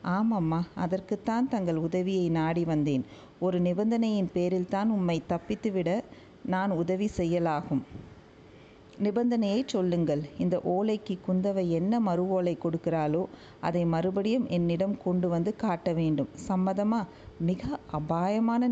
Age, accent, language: 50-69, native, Tamil